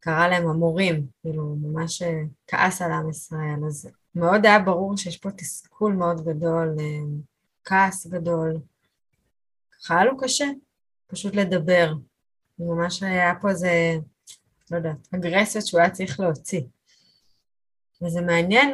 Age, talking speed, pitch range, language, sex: 20-39, 135 wpm, 160-190 Hz, Hebrew, female